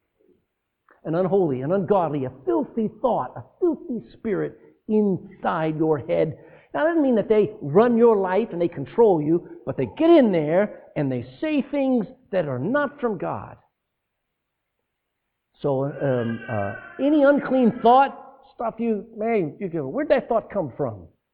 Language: English